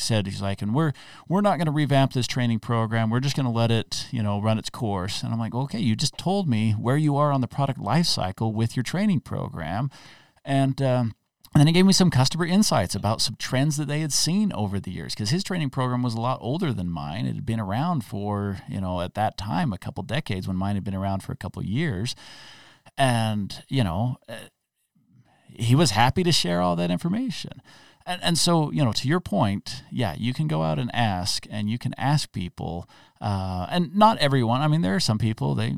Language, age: English, 40-59